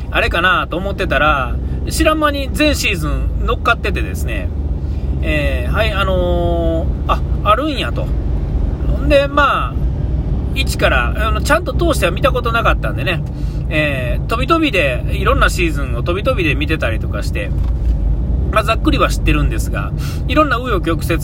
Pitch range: 70-85 Hz